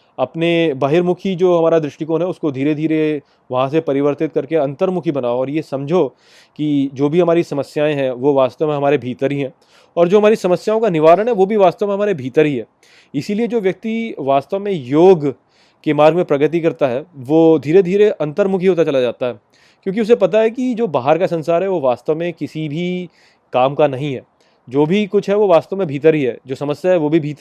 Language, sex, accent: Hindi, male, native